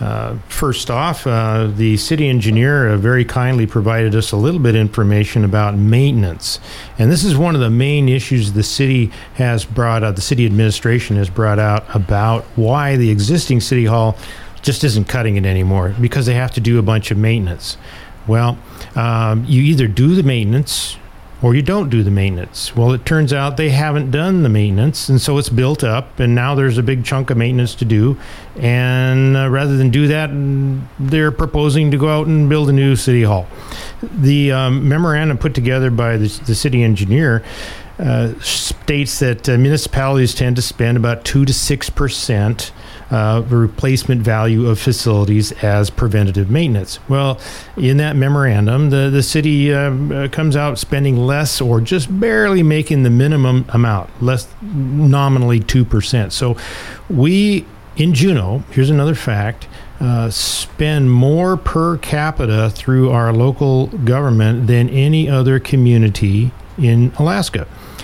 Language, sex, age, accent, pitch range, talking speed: English, male, 50-69, American, 110-140 Hz, 165 wpm